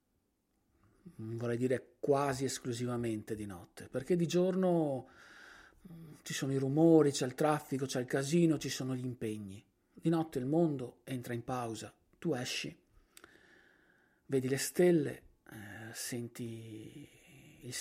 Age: 40-59